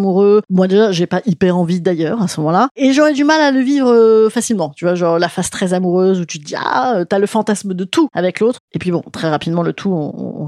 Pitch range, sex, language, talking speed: 185-260 Hz, female, French, 265 wpm